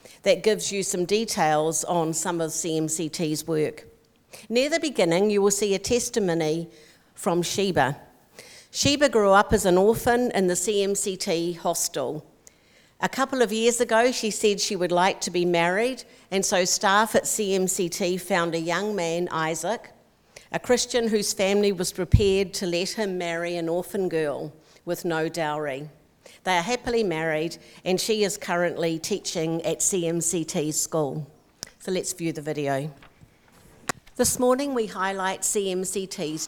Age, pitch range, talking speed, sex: 50-69, 165-210 Hz, 150 wpm, female